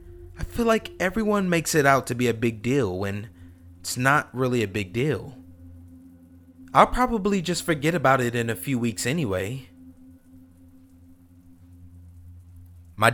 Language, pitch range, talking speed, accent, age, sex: English, 90-120 Hz, 140 wpm, American, 30-49, male